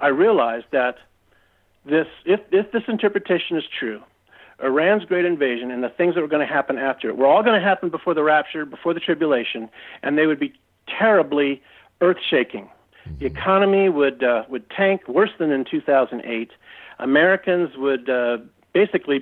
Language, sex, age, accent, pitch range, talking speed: English, male, 50-69, American, 140-185 Hz, 170 wpm